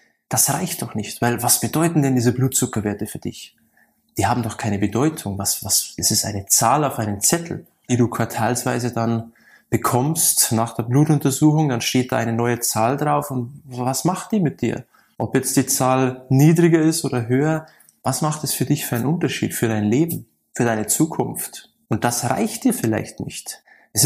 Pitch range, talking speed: 120-145 Hz, 190 wpm